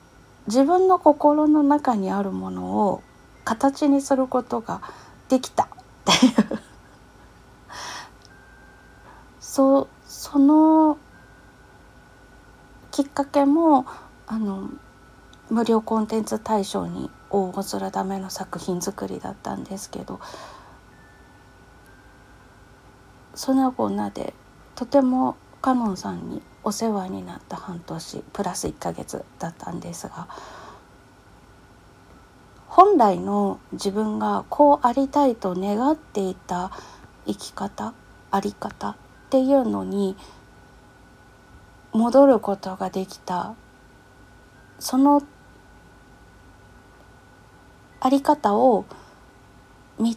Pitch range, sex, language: 195-275 Hz, female, Japanese